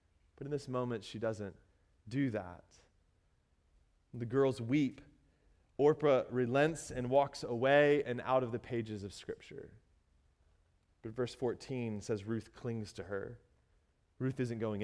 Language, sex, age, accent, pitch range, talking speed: English, male, 20-39, American, 105-150 Hz, 140 wpm